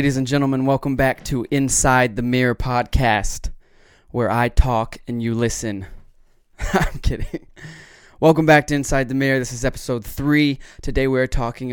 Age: 20-39